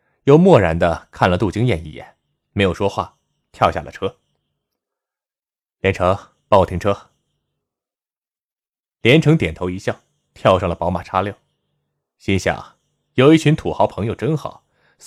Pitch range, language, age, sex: 100-140 Hz, Chinese, 20-39, male